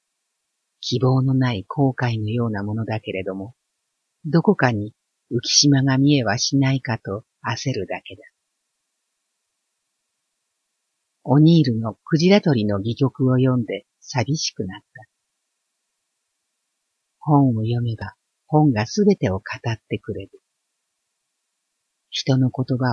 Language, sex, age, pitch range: Japanese, female, 50-69, 115-140 Hz